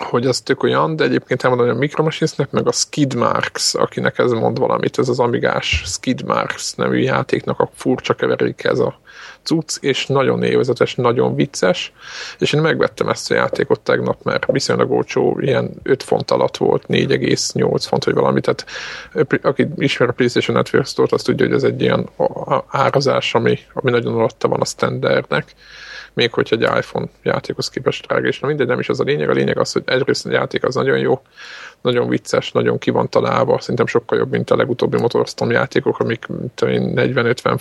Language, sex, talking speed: Hungarian, male, 190 wpm